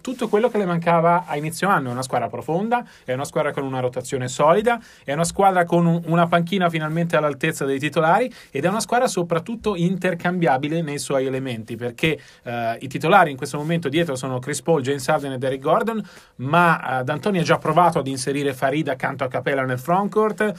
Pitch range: 135-175 Hz